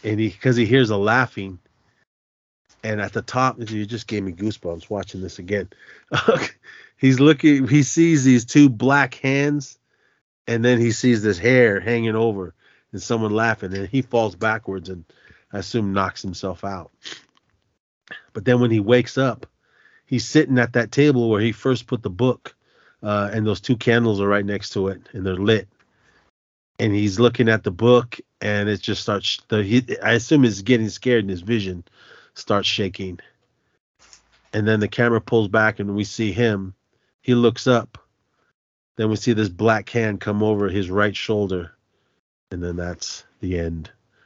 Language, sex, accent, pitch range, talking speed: English, male, American, 100-120 Hz, 170 wpm